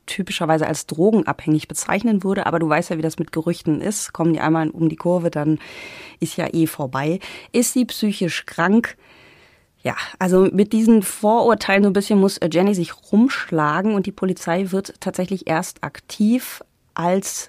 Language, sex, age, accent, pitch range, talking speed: German, female, 30-49, German, 165-215 Hz, 170 wpm